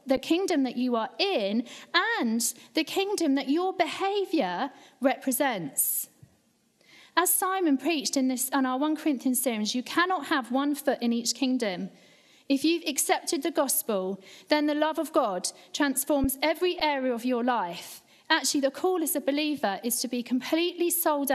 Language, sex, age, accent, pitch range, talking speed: English, female, 40-59, British, 240-310 Hz, 165 wpm